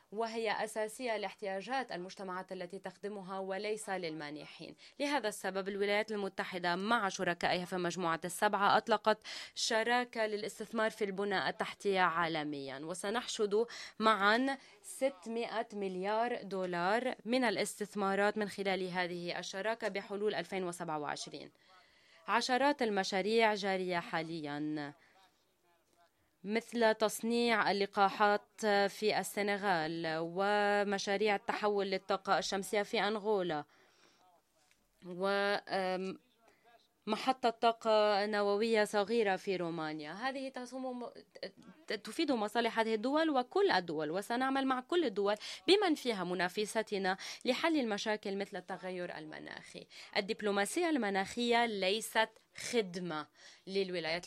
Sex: female